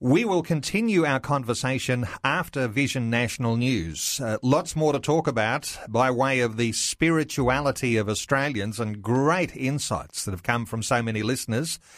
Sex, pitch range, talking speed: male, 115-145 Hz, 160 wpm